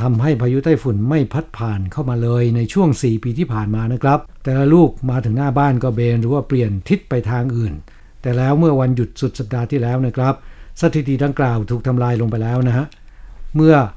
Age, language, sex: 60-79, Thai, male